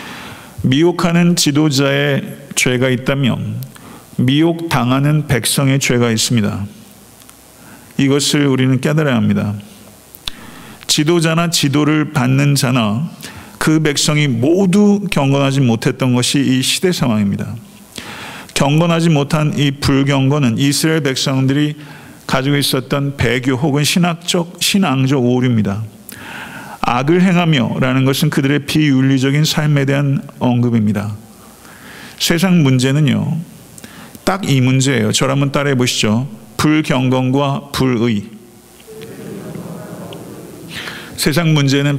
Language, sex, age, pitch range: Korean, male, 50-69, 125-150 Hz